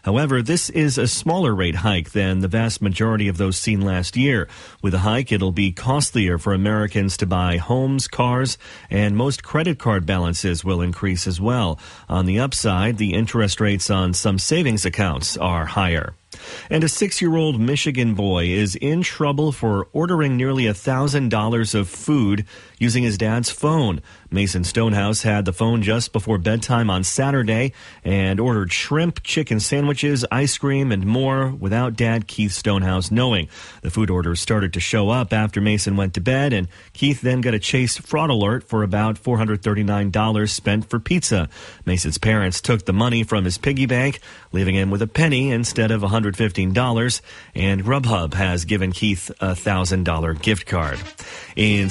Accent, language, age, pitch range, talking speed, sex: American, English, 40-59, 95-125 Hz, 165 wpm, male